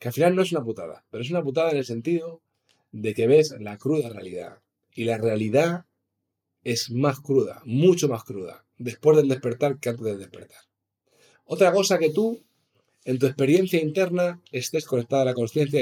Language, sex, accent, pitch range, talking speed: Spanish, male, Spanish, 105-150 Hz, 185 wpm